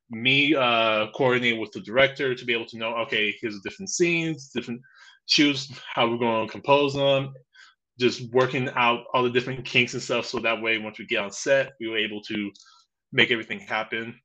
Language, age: English, 20-39